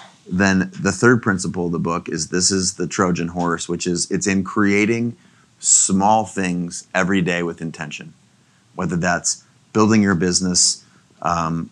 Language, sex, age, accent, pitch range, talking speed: English, male, 30-49, American, 90-105 Hz, 155 wpm